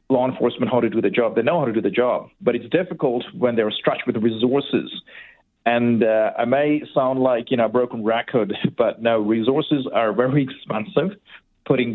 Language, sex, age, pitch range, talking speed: English, male, 40-59, 110-130 Hz, 205 wpm